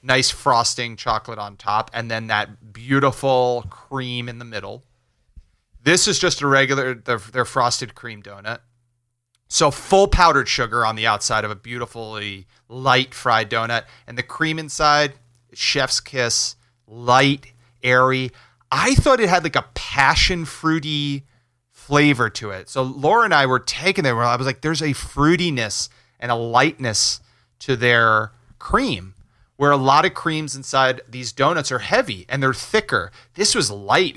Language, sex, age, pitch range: English, male, 30-49, 115-135 Hz